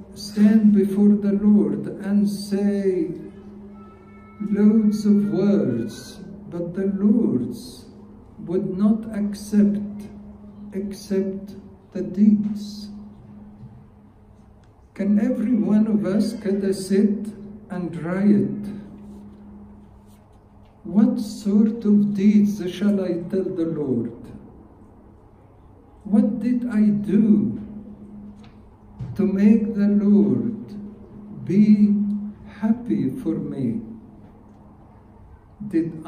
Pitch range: 165-210 Hz